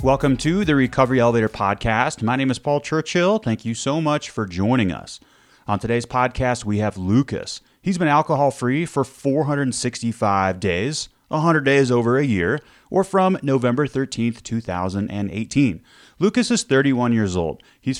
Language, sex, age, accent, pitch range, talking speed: English, male, 30-49, American, 100-140 Hz, 155 wpm